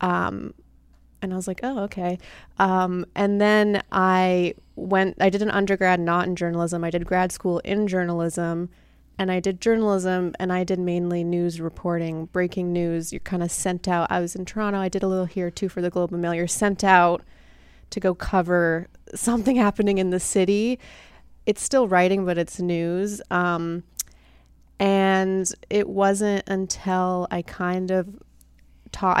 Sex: female